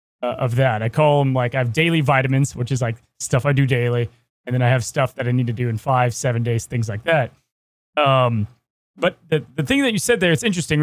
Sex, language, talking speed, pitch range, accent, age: male, English, 255 wpm, 130-180 Hz, American, 20-39